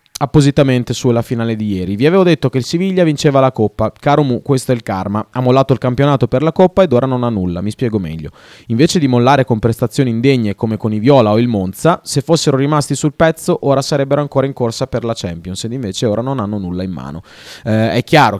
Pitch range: 100-130 Hz